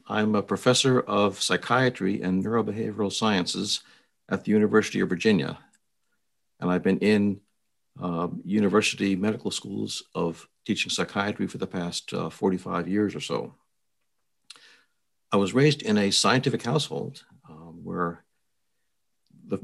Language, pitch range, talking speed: English, 95-110 Hz, 130 wpm